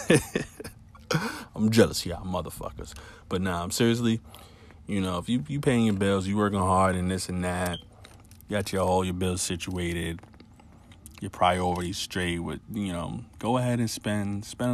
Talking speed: 170 wpm